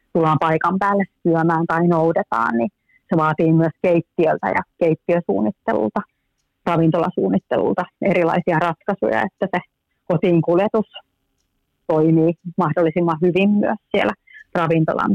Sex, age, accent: female, 30-49, native